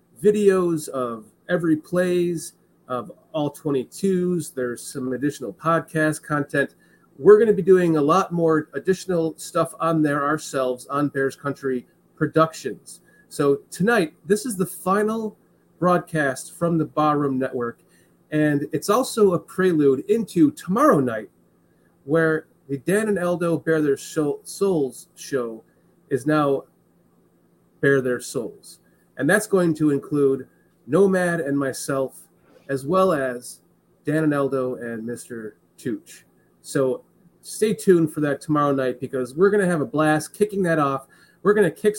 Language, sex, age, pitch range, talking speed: English, male, 30-49, 140-185 Hz, 145 wpm